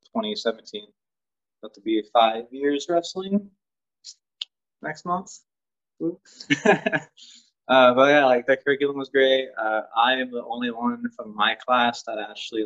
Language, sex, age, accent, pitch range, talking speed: English, male, 20-39, American, 105-150 Hz, 140 wpm